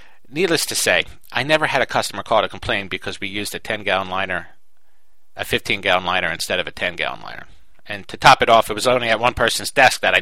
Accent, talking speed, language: American, 230 wpm, English